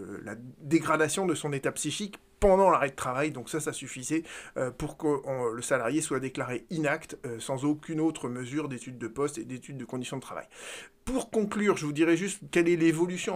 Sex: male